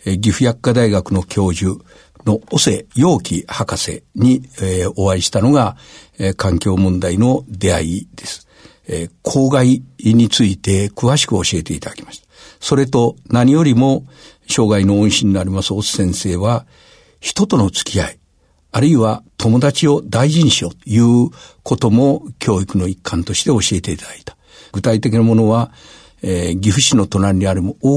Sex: male